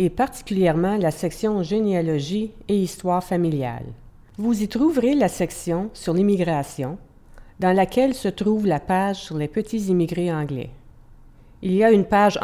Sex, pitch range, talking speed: female, 155-210 Hz, 150 wpm